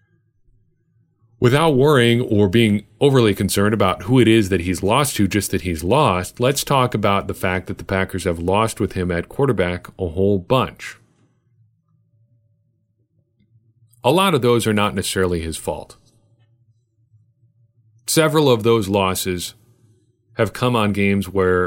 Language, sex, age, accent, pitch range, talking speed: English, male, 40-59, American, 95-115 Hz, 145 wpm